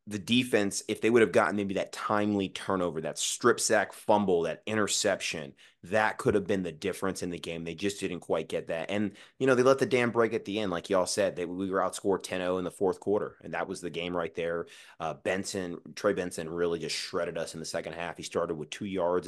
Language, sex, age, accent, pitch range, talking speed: English, male, 30-49, American, 90-110 Hz, 245 wpm